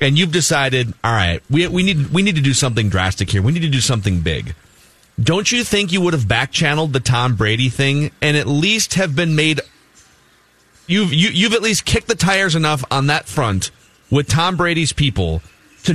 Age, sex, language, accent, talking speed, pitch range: 30-49, male, English, American, 205 wpm, 125-175 Hz